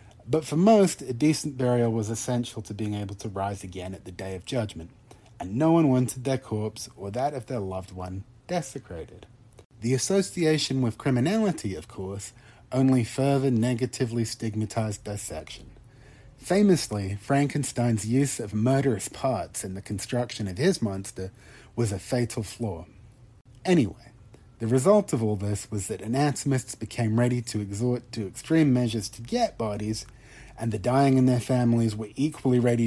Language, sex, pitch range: English, male, 105-130 Hz